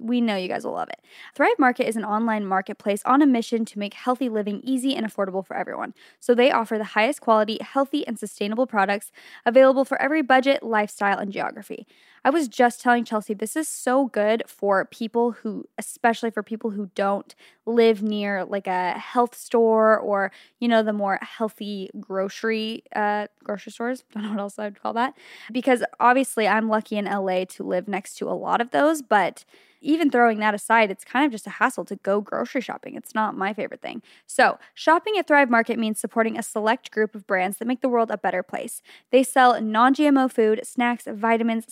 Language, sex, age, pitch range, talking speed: English, female, 10-29, 205-250 Hz, 205 wpm